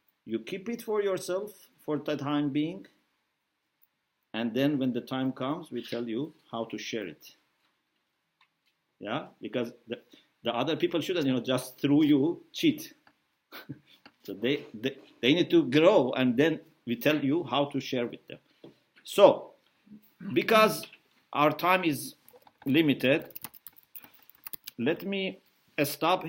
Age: 50-69